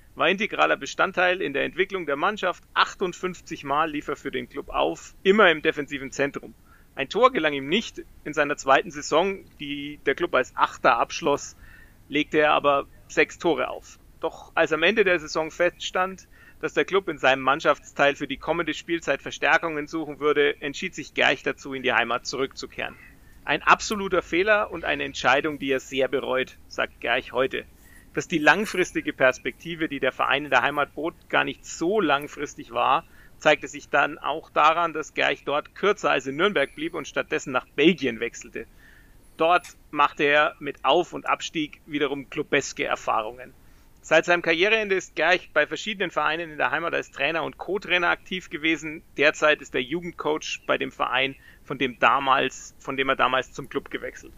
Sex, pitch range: male, 140-175 Hz